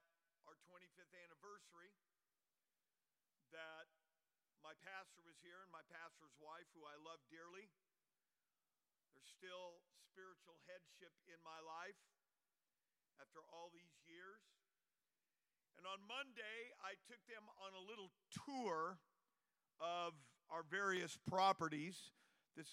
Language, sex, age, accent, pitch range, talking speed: English, male, 50-69, American, 160-190 Hz, 110 wpm